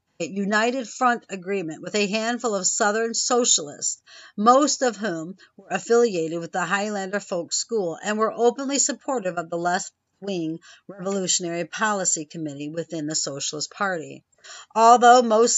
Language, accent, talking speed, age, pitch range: English, American, 140 wpm, 50-69, 175-230 Hz